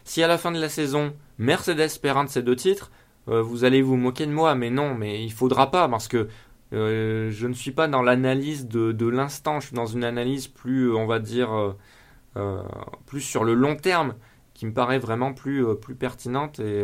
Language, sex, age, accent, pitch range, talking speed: French, male, 20-39, French, 115-145 Hz, 230 wpm